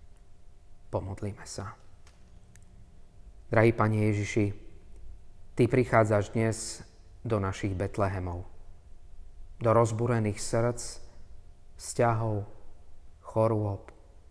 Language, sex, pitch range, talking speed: Slovak, male, 85-110 Hz, 65 wpm